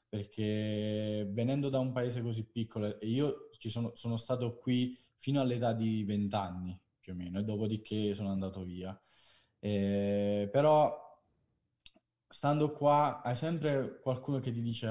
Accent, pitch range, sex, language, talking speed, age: native, 110-130 Hz, male, Italian, 140 wpm, 20-39